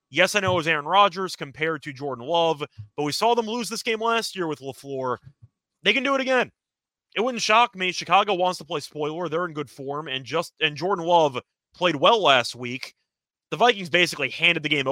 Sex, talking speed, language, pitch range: male, 220 wpm, English, 130-180 Hz